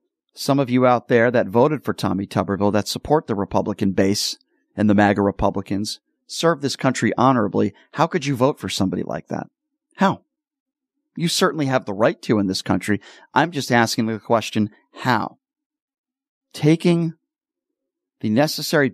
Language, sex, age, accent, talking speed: English, male, 40-59, American, 160 wpm